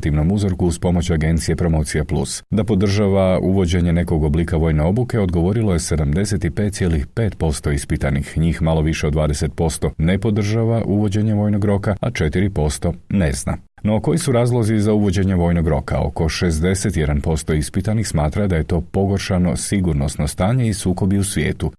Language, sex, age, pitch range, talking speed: Croatian, male, 40-59, 75-95 Hz, 150 wpm